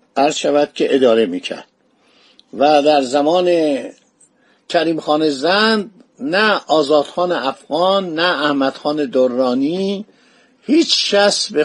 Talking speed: 110 wpm